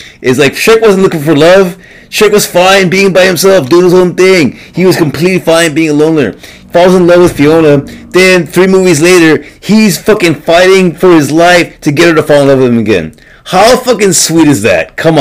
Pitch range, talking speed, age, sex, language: 150-195 Hz, 215 wpm, 30-49, male, English